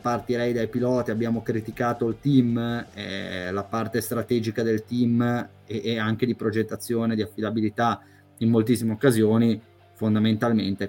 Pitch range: 110-125 Hz